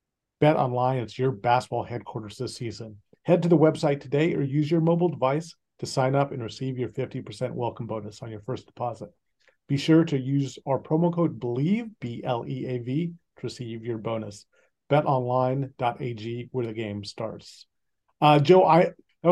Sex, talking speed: male, 160 wpm